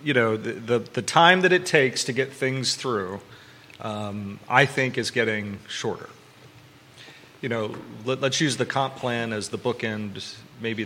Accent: American